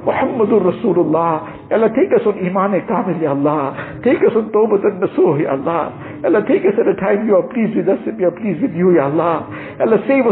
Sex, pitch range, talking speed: male, 155-200 Hz, 220 wpm